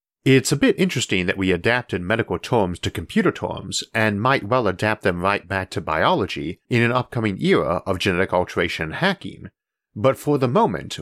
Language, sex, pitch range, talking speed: English, male, 95-130 Hz, 180 wpm